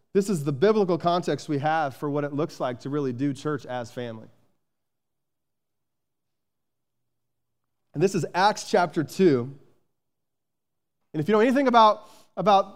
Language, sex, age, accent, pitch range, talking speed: English, male, 30-49, American, 155-195 Hz, 145 wpm